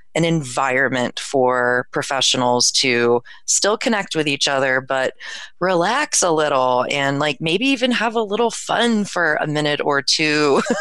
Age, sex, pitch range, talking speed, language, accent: 30-49, female, 135-165 Hz, 150 wpm, English, American